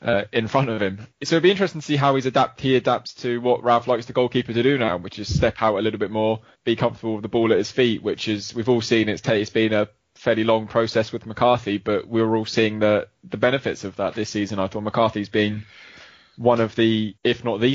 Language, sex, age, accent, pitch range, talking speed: English, male, 20-39, British, 105-120 Hz, 260 wpm